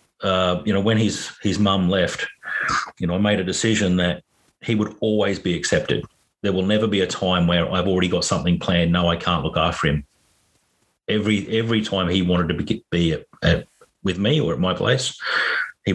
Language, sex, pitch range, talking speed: English, male, 90-105 Hz, 205 wpm